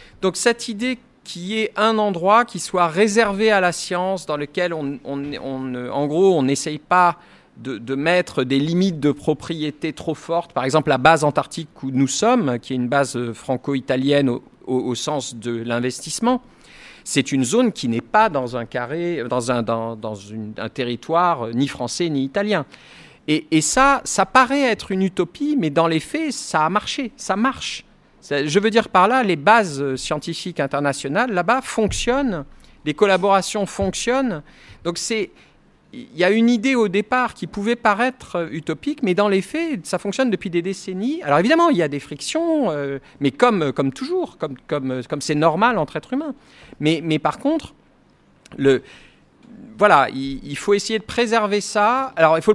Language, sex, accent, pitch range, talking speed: French, male, French, 145-225 Hz, 185 wpm